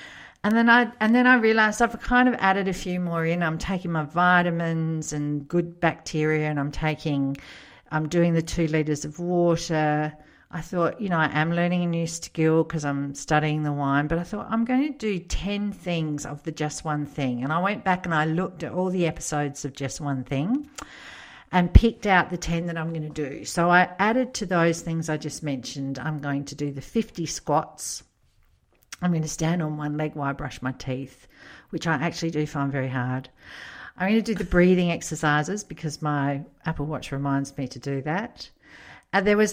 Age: 50-69